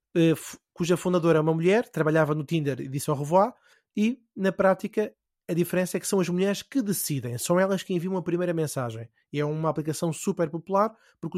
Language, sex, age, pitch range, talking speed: Portuguese, male, 20-39, 155-195 Hz, 200 wpm